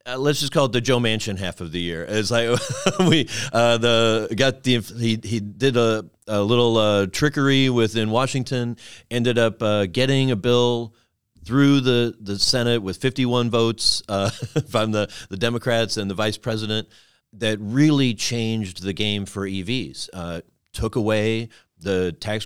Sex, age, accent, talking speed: male, 40-59, American, 170 wpm